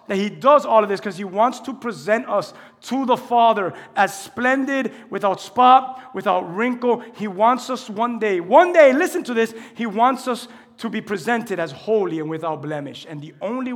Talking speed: 195 wpm